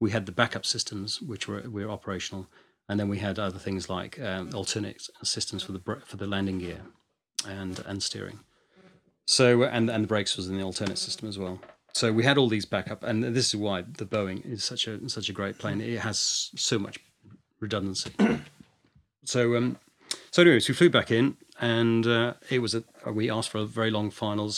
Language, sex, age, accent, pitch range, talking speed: English, male, 40-59, British, 100-115 Hz, 210 wpm